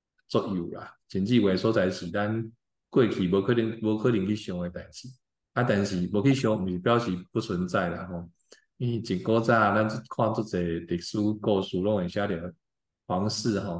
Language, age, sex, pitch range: Chinese, 20-39, male, 95-115 Hz